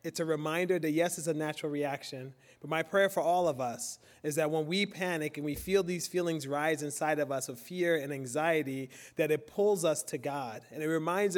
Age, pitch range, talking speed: 30-49, 150-185 Hz, 225 wpm